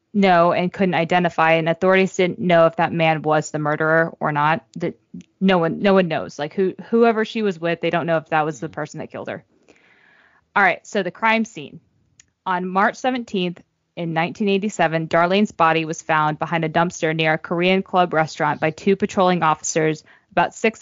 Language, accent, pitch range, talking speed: English, American, 160-195 Hz, 195 wpm